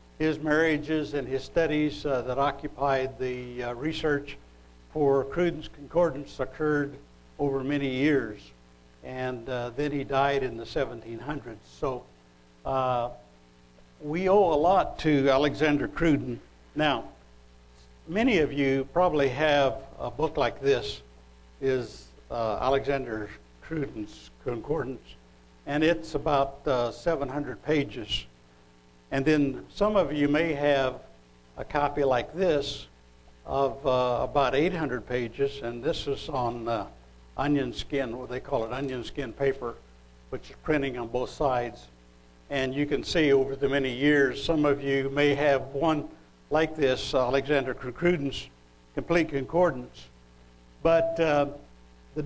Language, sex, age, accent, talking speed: English, male, 60-79, American, 135 wpm